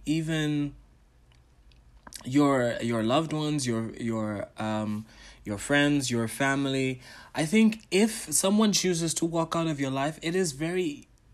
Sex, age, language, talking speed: male, 20-39, English, 140 wpm